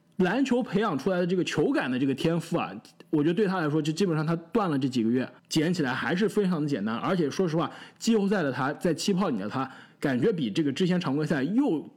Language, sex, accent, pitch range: Chinese, male, native, 145-205 Hz